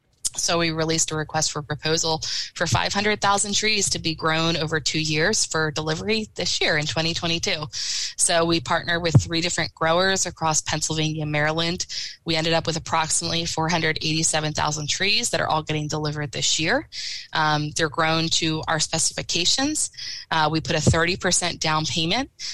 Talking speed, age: 155 wpm, 20-39